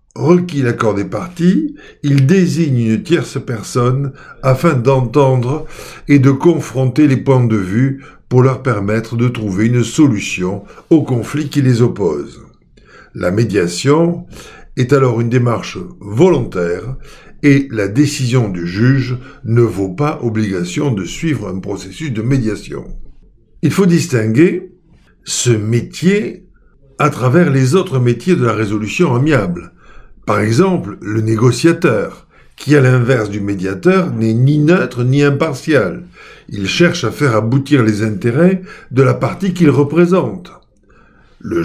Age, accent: 60-79, French